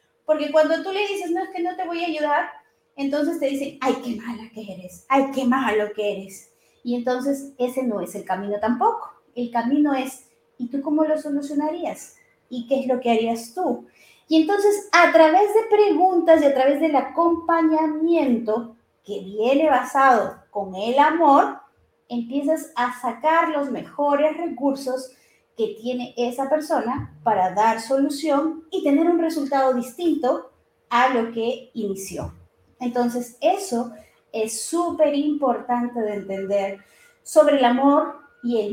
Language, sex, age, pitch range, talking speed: Spanish, female, 30-49, 245-315 Hz, 155 wpm